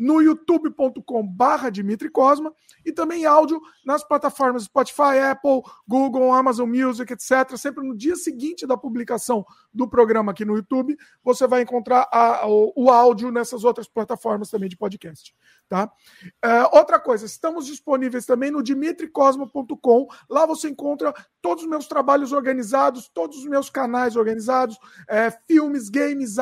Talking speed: 145 wpm